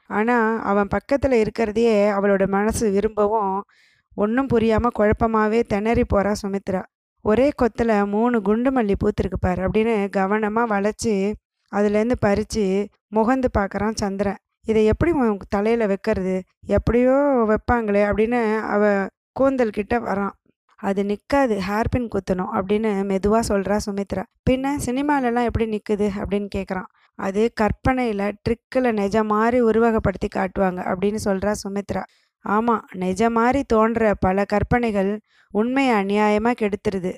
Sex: female